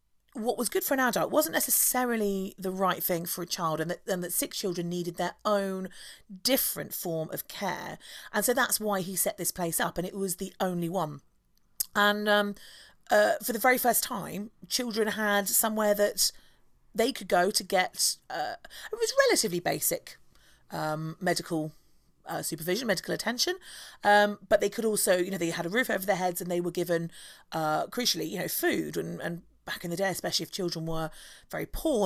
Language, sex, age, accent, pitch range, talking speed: English, female, 40-59, British, 175-235 Hz, 195 wpm